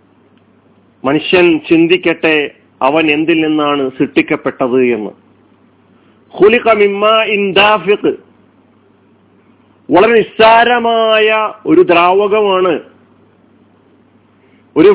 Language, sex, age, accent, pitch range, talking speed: Malayalam, male, 40-59, native, 155-205 Hz, 50 wpm